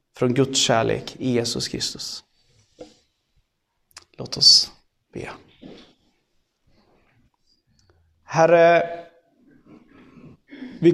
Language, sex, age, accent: Swedish, male, 30-49, native